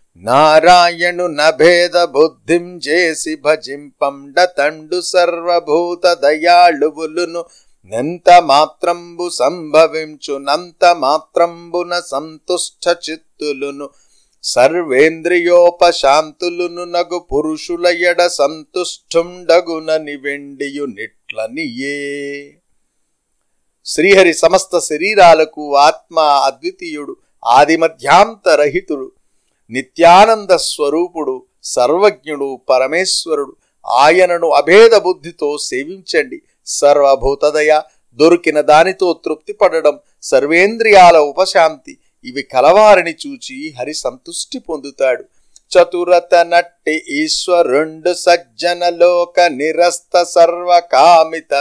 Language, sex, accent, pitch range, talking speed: Telugu, male, native, 155-180 Hz, 50 wpm